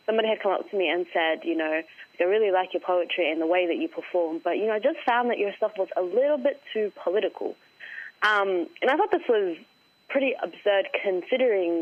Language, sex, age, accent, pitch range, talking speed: English, female, 20-39, Australian, 170-200 Hz, 230 wpm